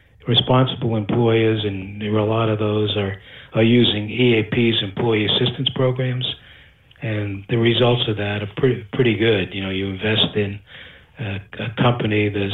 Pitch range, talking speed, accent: 105-120 Hz, 165 wpm, American